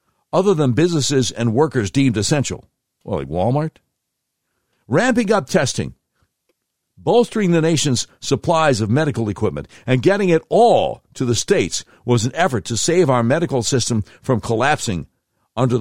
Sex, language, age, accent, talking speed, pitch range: male, English, 60-79, American, 145 wpm, 110-150 Hz